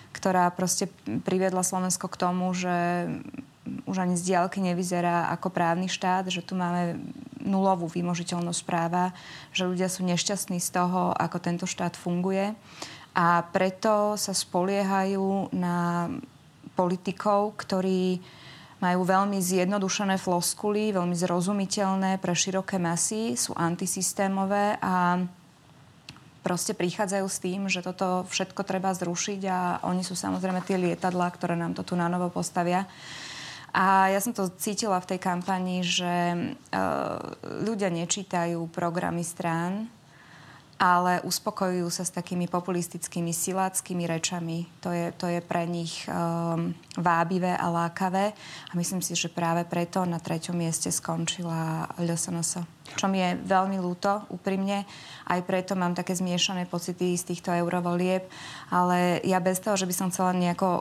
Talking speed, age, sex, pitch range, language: 135 wpm, 20-39, female, 175-190 Hz, Slovak